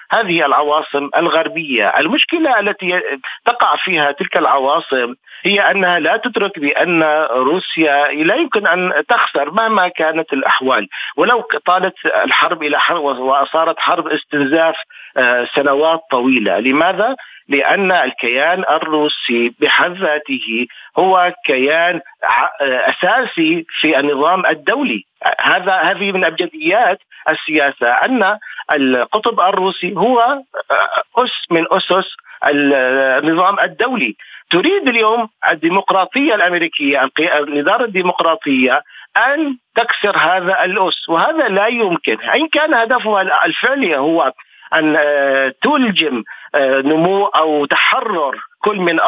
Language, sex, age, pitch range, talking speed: Arabic, male, 40-59, 145-225 Hz, 100 wpm